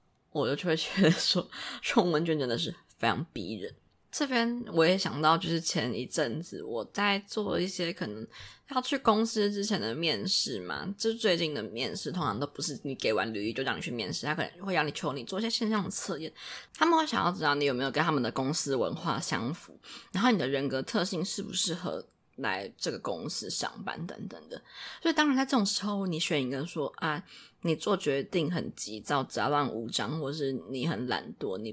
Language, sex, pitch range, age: Chinese, female, 155-245 Hz, 20-39